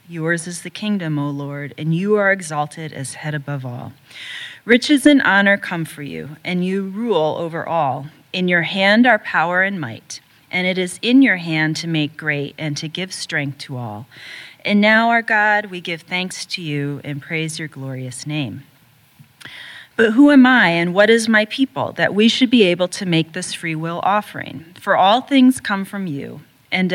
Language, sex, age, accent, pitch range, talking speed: English, female, 30-49, American, 150-205 Hz, 195 wpm